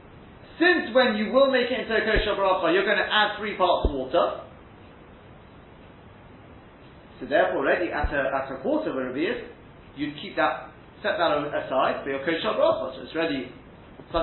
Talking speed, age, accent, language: 175 wpm, 40-59, British, English